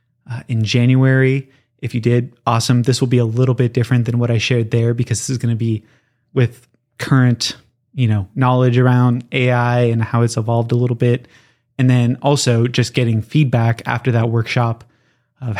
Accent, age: American, 20-39